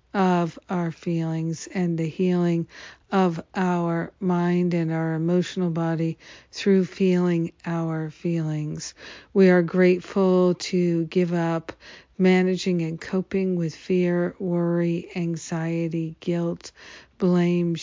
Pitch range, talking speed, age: 165-185 Hz, 110 wpm, 50-69